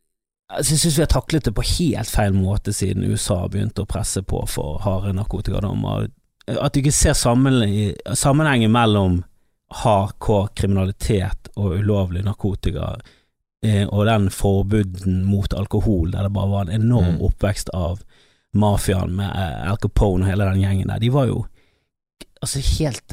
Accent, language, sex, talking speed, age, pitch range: Swedish, English, male, 140 wpm, 30-49, 95-120 Hz